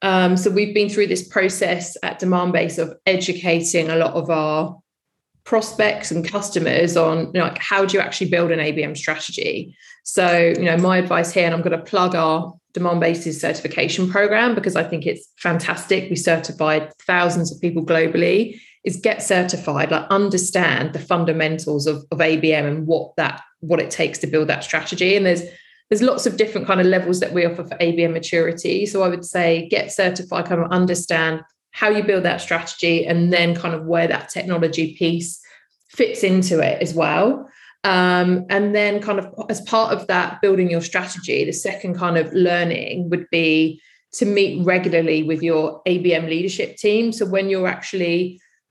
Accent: British